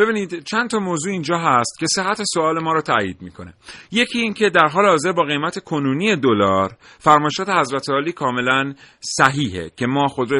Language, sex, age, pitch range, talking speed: Persian, male, 40-59, 120-175 Hz, 165 wpm